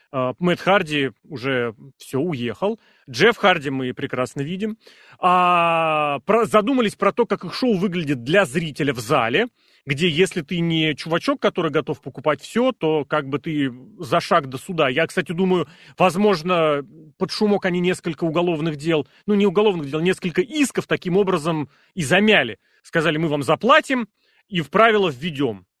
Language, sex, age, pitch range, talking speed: Russian, male, 30-49, 150-200 Hz, 160 wpm